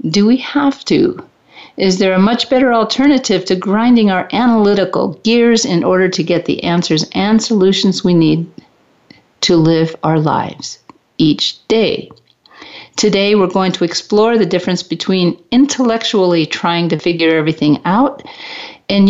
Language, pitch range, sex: English, 170-220 Hz, female